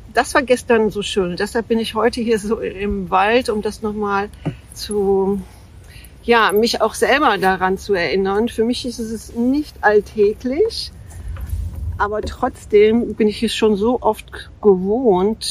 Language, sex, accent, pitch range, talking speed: German, female, German, 190-225 Hz, 150 wpm